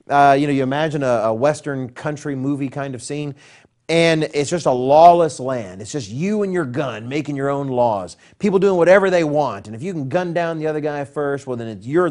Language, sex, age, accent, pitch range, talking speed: English, male, 40-59, American, 120-165 Hz, 235 wpm